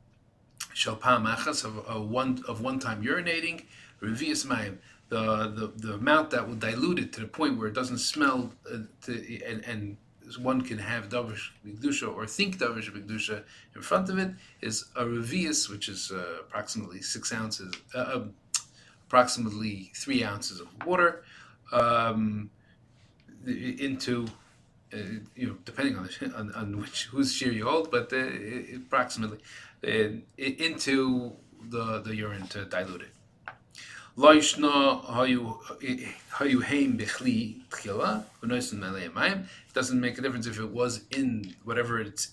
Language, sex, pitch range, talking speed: English, male, 110-140 Hz, 130 wpm